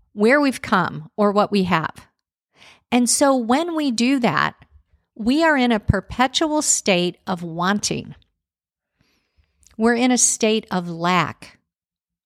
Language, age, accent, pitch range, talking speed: English, 50-69, American, 190-255 Hz, 130 wpm